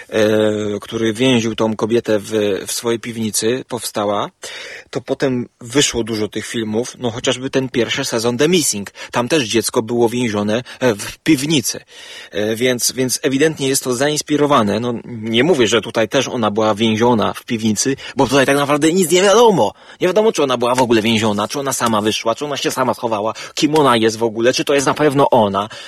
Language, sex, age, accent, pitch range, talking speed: Polish, male, 30-49, native, 115-135 Hz, 190 wpm